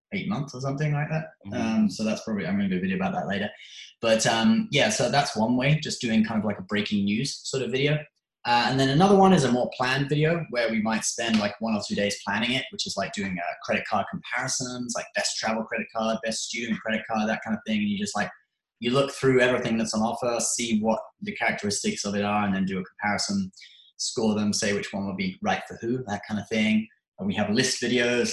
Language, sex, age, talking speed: English, male, 20-39, 255 wpm